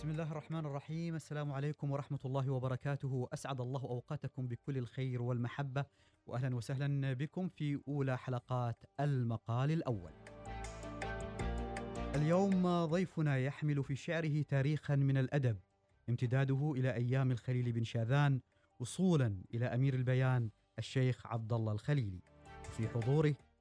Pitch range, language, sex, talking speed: 115-145 Hz, Arabic, male, 120 wpm